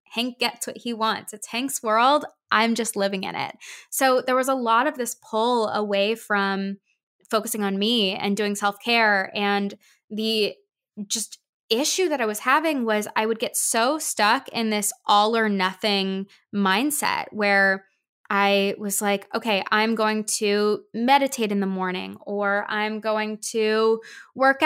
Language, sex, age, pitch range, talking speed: English, female, 20-39, 200-240 Hz, 165 wpm